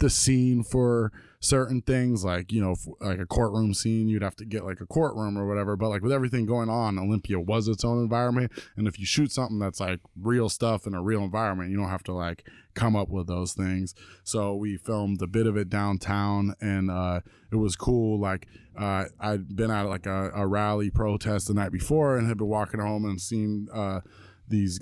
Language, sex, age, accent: English, male, 20-39, American